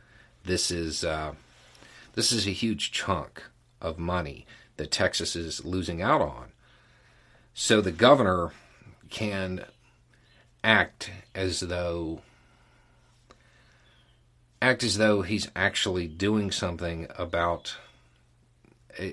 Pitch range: 85-115 Hz